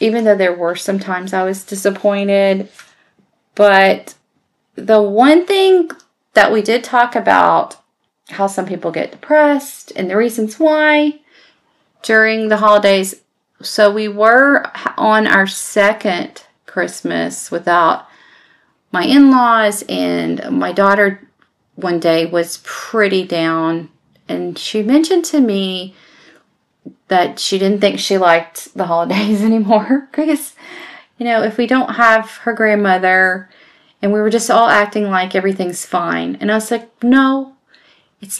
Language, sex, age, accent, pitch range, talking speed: English, female, 40-59, American, 195-245 Hz, 135 wpm